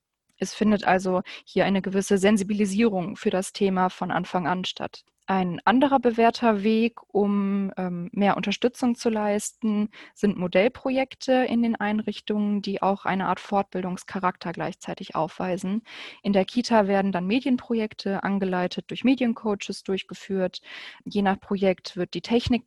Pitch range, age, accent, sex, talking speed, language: 190-225 Hz, 20-39, German, female, 135 wpm, German